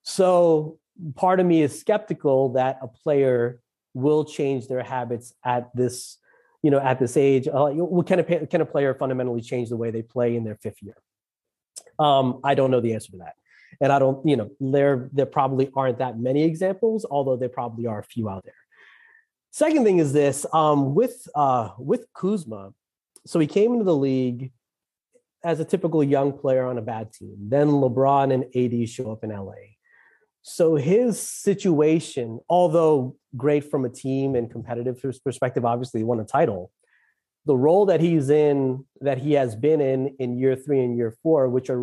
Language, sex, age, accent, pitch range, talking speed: English, male, 30-49, American, 125-155 Hz, 185 wpm